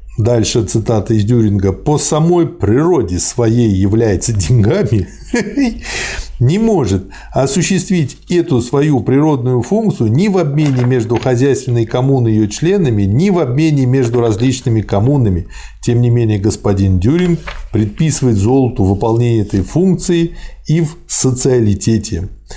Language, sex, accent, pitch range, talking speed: Russian, male, native, 110-150 Hz, 120 wpm